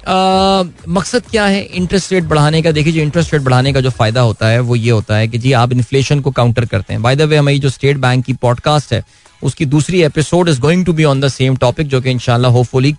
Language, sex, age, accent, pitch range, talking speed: Hindi, male, 20-39, native, 125-185 Hz, 250 wpm